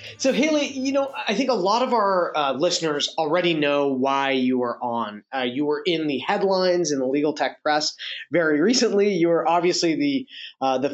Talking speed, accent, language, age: 205 wpm, American, English, 20-39